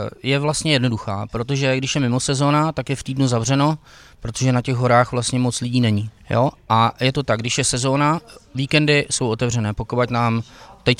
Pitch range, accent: 115-130 Hz, native